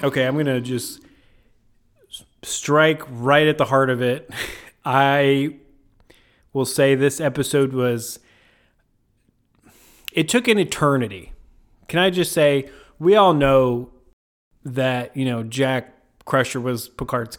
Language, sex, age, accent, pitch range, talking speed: English, male, 30-49, American, 120-140 Hz, 125 wpm